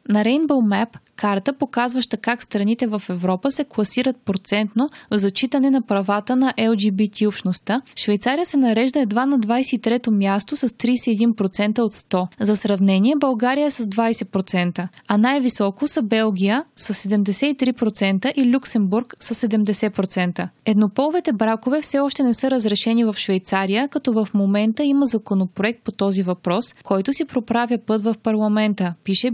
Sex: female